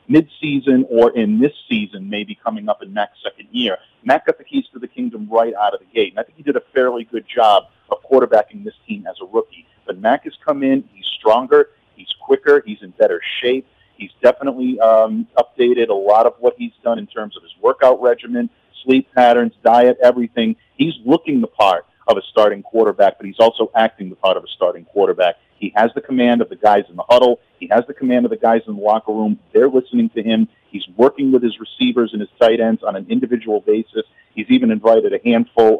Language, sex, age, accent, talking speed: English, male, 40-59, American, 225 wpm